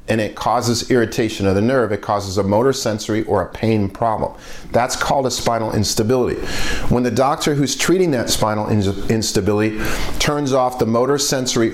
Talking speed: 175 wpm